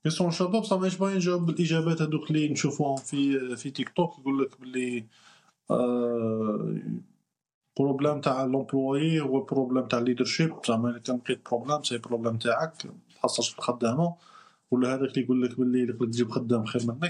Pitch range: 125-175 Hz